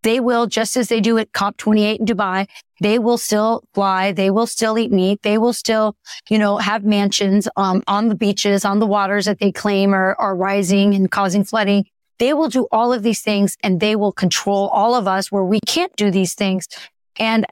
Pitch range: 200-225 Hz